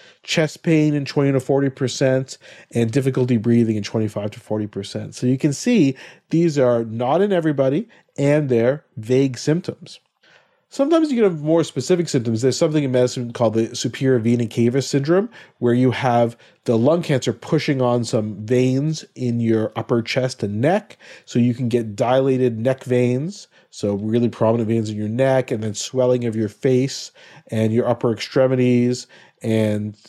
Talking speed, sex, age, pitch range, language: 165 wpm, male, 40-59, 115-140 Hz, English